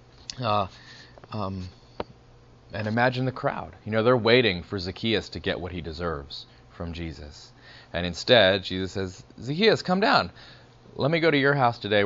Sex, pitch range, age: male, 95-125 Hz, 30-49